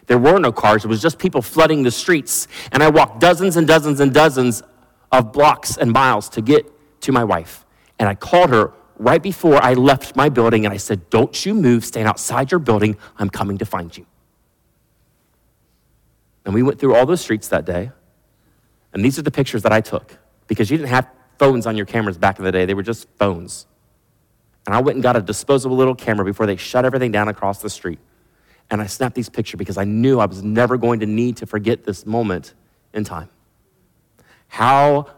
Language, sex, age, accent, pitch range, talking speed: English, male, 40-59, American, 105-130 Hz, 210 wpm